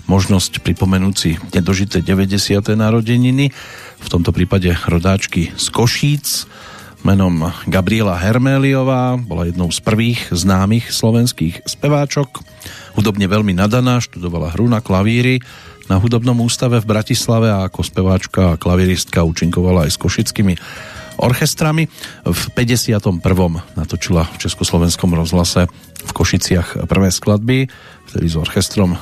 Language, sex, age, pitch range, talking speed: Slovak, male, 40-59, 90-120 Hz, 115 wpm